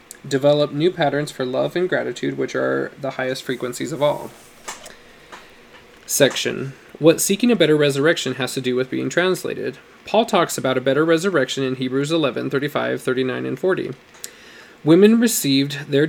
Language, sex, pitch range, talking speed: English, male, 130-160 Hz, 160 wpm